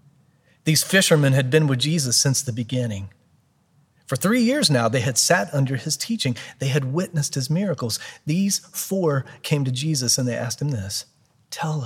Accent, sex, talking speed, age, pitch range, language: American, male, 175 wpm, 40-59, 125-165 Hz, English